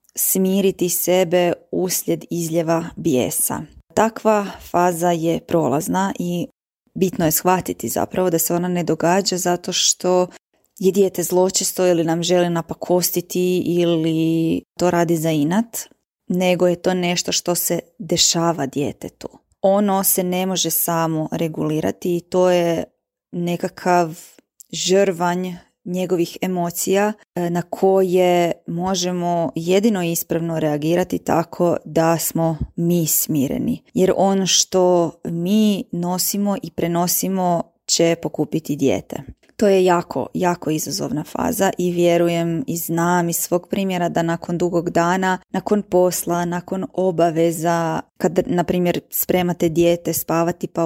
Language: Croatian